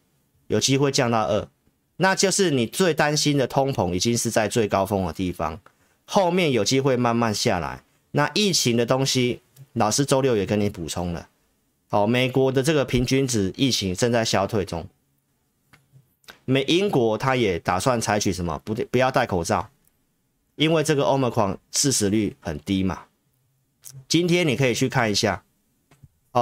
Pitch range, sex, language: 100-140 Hz, male, Chinese